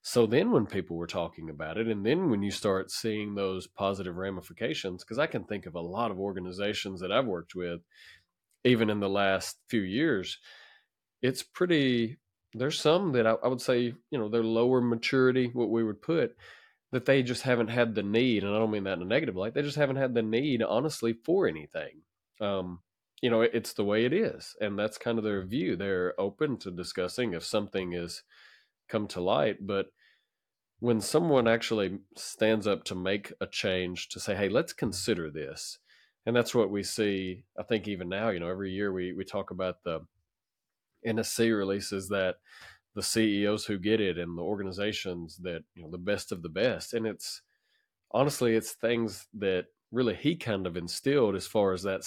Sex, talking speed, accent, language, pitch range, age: male, 195 wpm, American, English, 95-115 Hz, 30-49